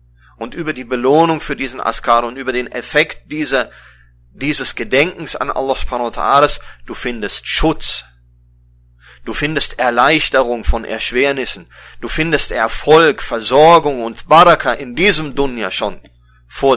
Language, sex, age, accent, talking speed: German, male, 30-49, German, 130 wpm